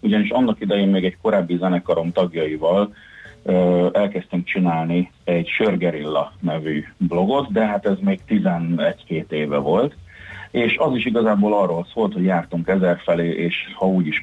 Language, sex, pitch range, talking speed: Hungarian, male, 85-115 Hz, 150 wpm